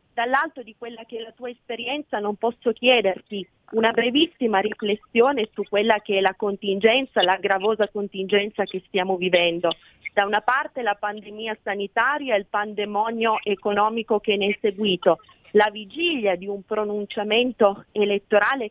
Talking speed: 150 wpm